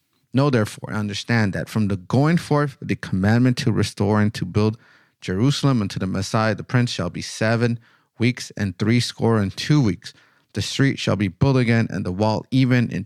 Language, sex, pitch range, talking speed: English, male, 105-130 Hz, 190 wpm